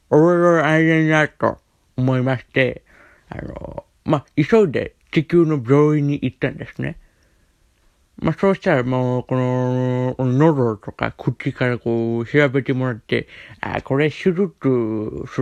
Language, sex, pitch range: Japanese, male, 120-160 Hz